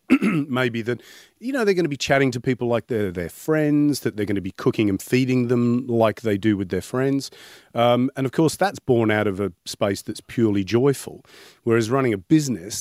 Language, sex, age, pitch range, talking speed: English, male, 40-59, 95-120 Hz, 220 wpm